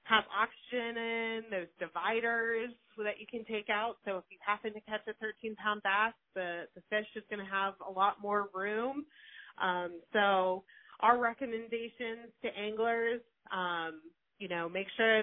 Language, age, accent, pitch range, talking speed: English, 30-49, American, 195-230 Hz, 165 wpm